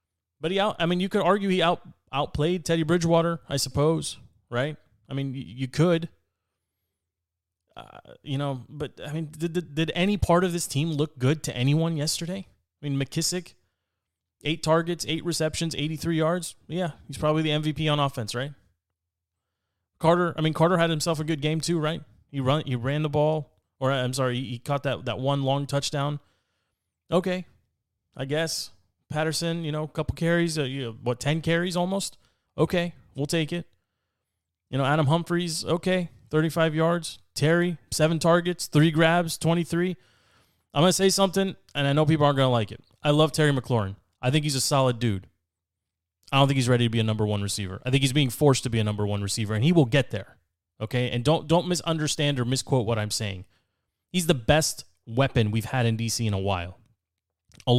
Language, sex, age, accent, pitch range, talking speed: English, male, 20-39, American, 110-165 Hz, 195 wpm